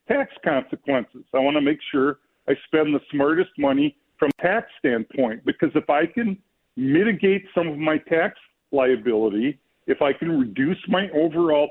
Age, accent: 50-69, American